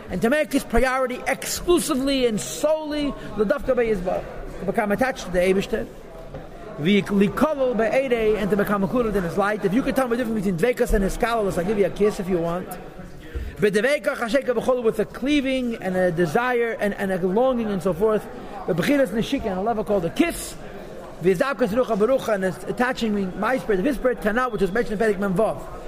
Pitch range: 195-250 Hz